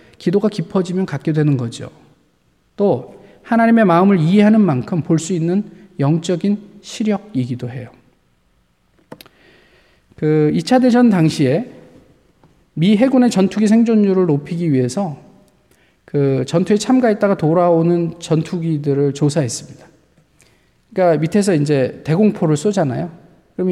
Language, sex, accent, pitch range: Korean, male, native, 145-195 Hz